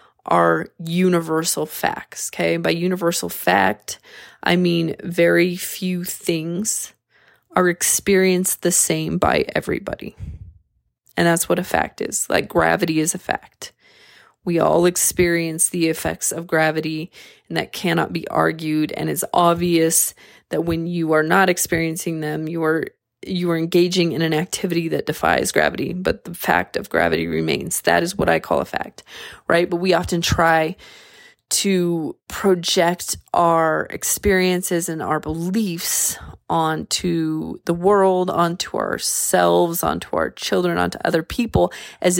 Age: 20-39